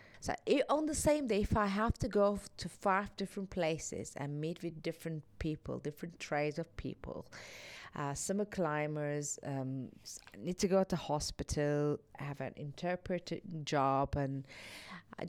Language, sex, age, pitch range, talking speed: English, female, 30-49, 145-200 Hz, 160 wpm